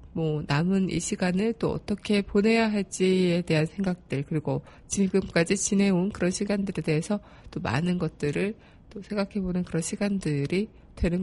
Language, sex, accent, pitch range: Korean, female, native, 170-205 Hz